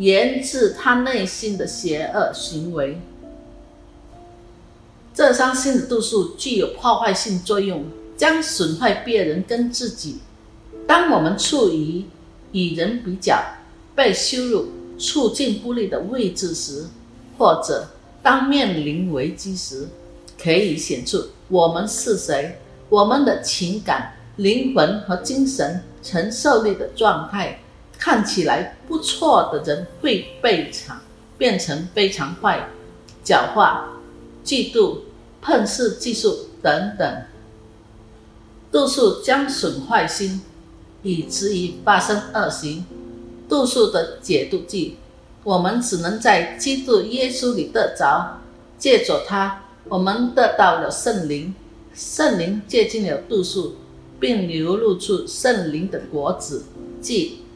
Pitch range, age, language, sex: 160-250 Hz, 50-69, Indonesian, female